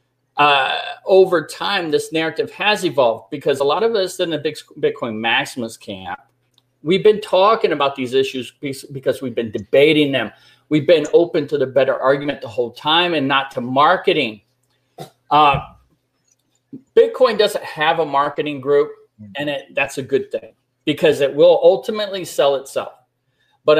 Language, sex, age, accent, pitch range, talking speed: English, male, 40-59, American, 135-210 Hz, 155 wpm